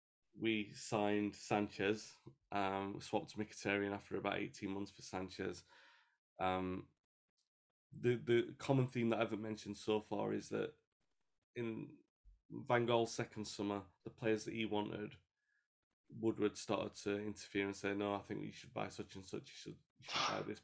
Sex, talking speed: male, 170 wpm